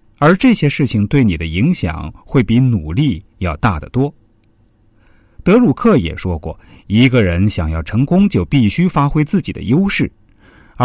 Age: 50-69